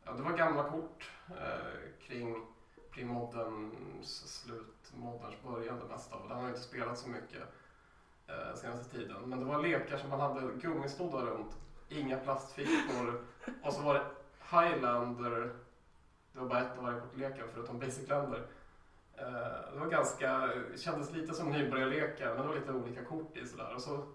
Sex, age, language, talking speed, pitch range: male, 20-39, Swedish, 170 wpm, 120-140 Hz